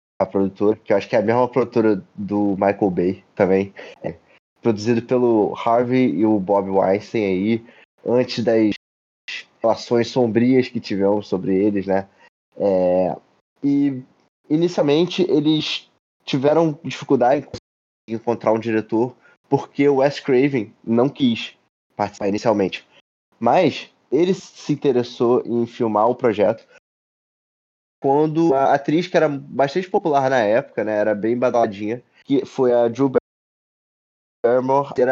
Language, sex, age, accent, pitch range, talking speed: Portuguese, male, 20-39, Brazilian, 105-140 Hz, 135 wpm